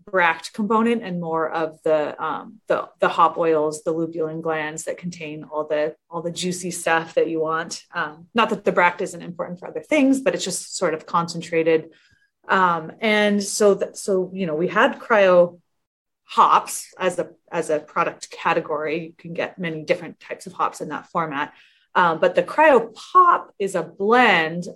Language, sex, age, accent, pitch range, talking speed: English, female, 30-49, American, 160-210 Hz, 185 wpm